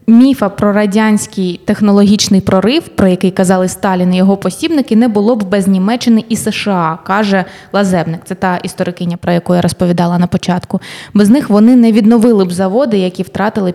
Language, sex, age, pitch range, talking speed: Ukrainian, female, 20-39, 185-225 Hz, 170 wpm